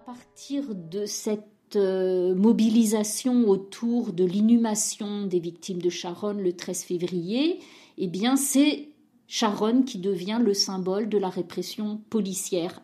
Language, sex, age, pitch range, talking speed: French, female, 50-69, 185-235 Hz, 125 wpm